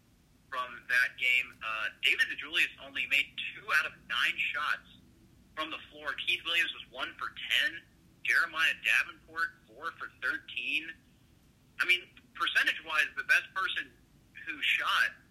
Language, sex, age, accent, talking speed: English, male, 40-59, American, 135 wpm